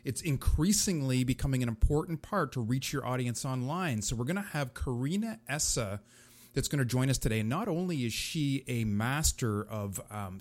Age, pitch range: 30-49, 115-145 Hz